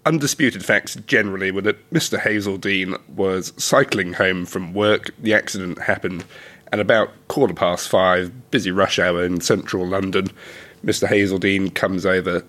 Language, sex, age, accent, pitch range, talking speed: English, male, 30-49, British, 90-100 Hz, 145 wpm